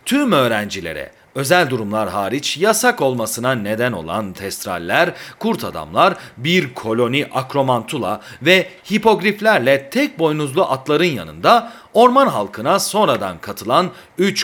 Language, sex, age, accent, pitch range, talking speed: Turkish, male, 40-59, native, 120-195 Hz, 110 wpm